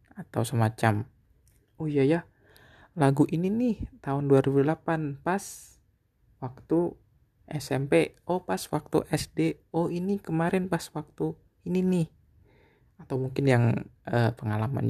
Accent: native